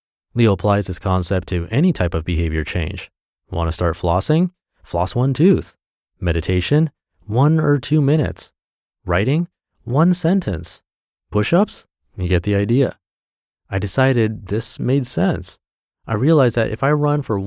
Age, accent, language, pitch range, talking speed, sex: 30-49, American, English, 90-115 Hz, 145 wpm, male